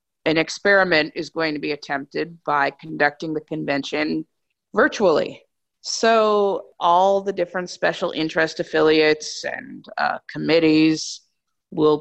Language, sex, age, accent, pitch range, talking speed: English, female, 30-49, American, 155-185 Hz, 115 wpm